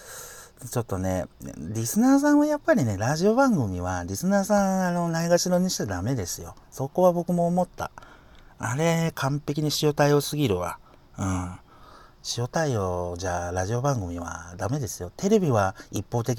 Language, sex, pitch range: Japanese, male, 105-175 Hz